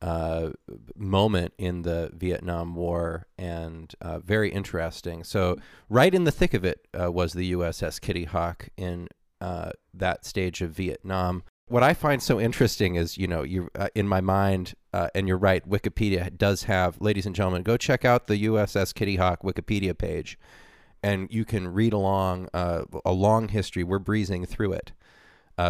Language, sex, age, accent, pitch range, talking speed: English, male, 30-49, American, 90-105 Hz, 175 wpm